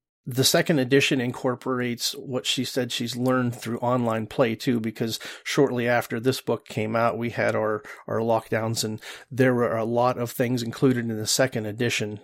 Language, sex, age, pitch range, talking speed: English, male, 40-59, 115-130 Hz, 180 wpm